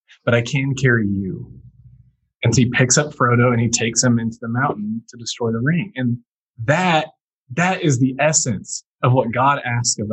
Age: 20-39